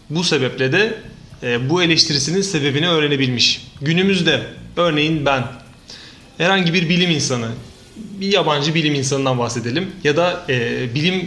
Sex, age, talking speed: male, 30-49, 115 wpm